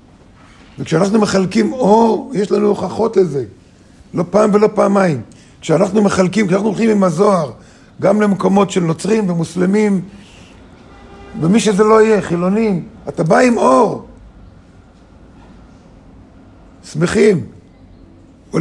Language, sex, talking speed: Hebrew, male, 105 wpm